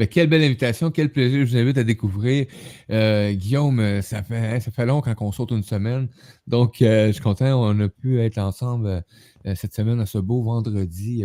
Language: French